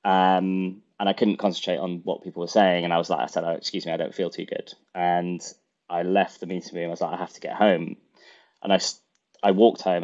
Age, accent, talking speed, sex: 20-39, British, 255 wpm, male